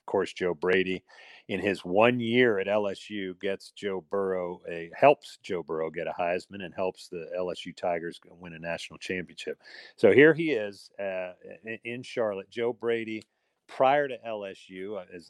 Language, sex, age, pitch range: English, male, 40-59, 90-115 Hz